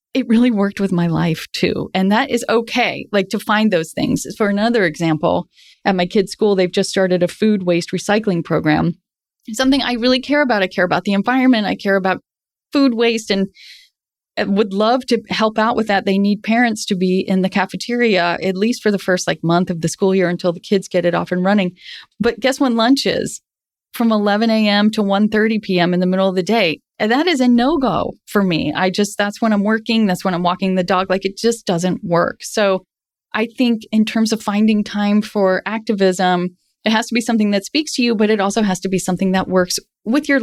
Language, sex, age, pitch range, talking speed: English, female, 30-49, 185-230 Hz, 225 wpm